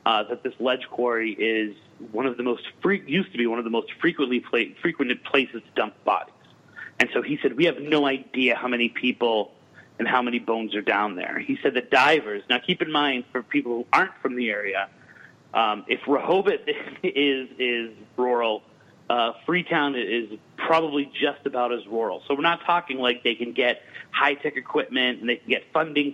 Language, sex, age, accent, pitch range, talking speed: English, male, 30-49, American, 115-140 Hz, 200 wpm